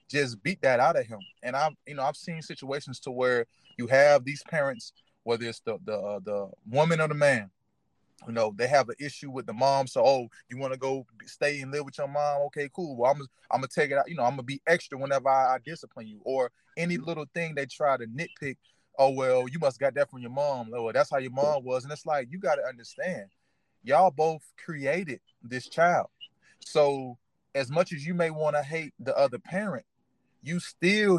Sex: male